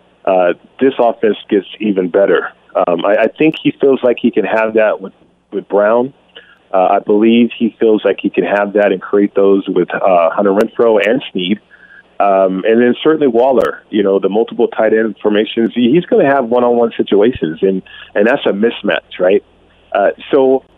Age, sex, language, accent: 40-59, male, English, American